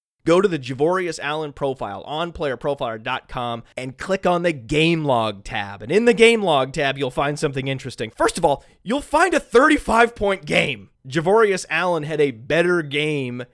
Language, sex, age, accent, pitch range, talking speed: English, male, 30-49, American, 135-175 Hz, 175 wpm